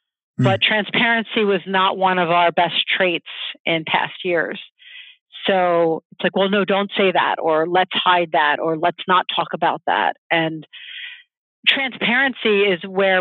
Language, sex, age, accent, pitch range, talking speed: English, female, 40-59, American, 175-210 Hz, 155 wpm